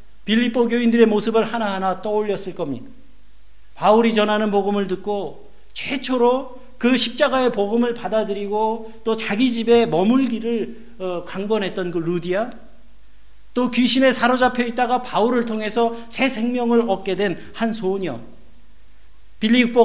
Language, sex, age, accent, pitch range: Korean, male, 50-69, native, 190-245 Hz